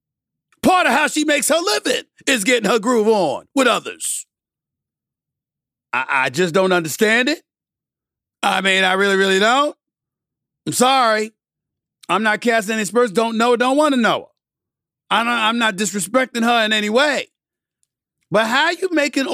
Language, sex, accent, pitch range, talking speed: English, male, American, 210-275 Hz, 170 wpm